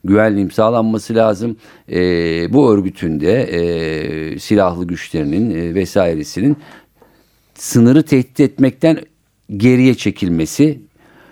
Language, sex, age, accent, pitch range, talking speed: Turkish, male, 50-69, native, 90-115 Hz, 85 wpm